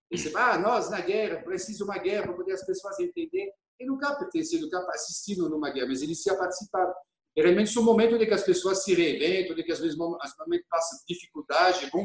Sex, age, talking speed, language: male, 50-69, 215 wpm, Portuguese